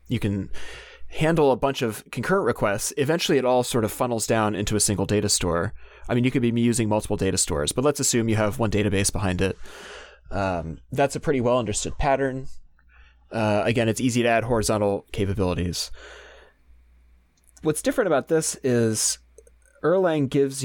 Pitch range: 100-130 Hz